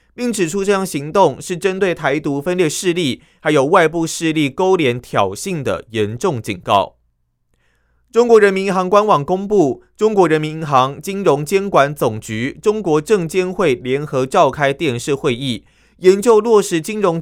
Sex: male